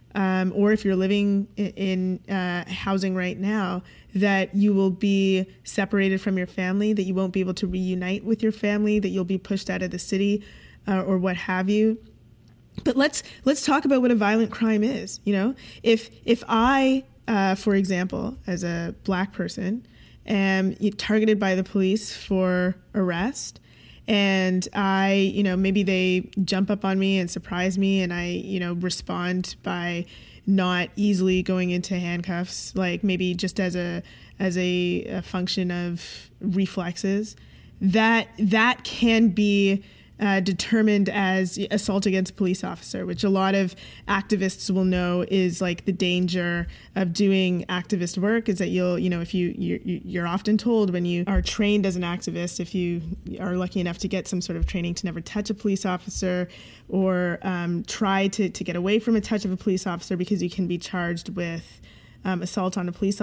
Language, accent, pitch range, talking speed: English, American, 180-205 Hz, 180 wpm